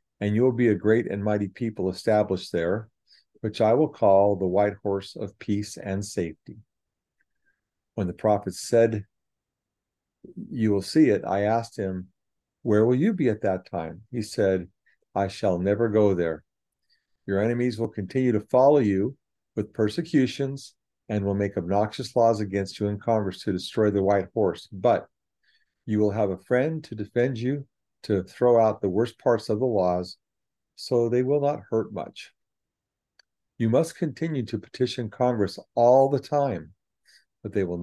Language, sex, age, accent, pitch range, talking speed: English, male, 50-69, American, 100-120 Hz, 170 wpm